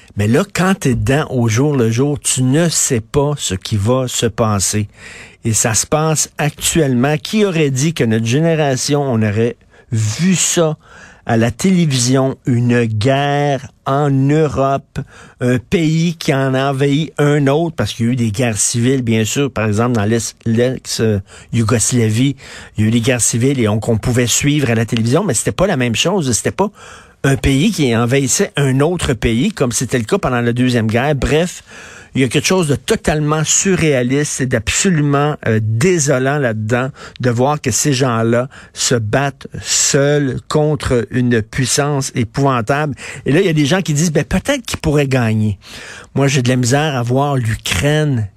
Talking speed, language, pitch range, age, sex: 185 wpm, French, 120-145 Hz, 50-69, male